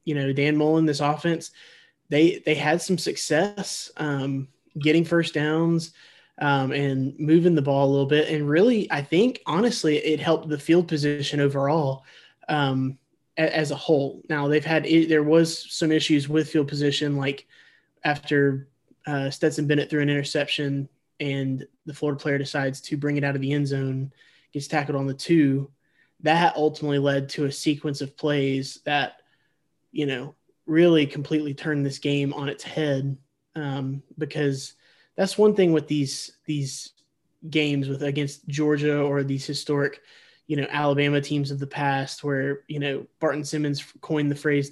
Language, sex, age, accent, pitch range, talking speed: English, male, 20-39, American, 140-155 Hz, 165 wpm